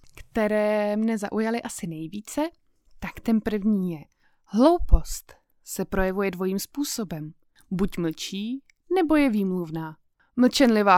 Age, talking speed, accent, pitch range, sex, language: 20-39, 110 wpm, native, 195-250 Hz, female, Czech